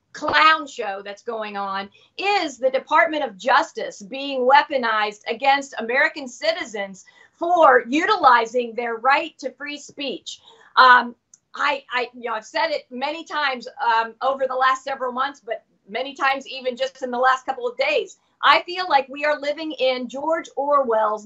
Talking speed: 165 wpm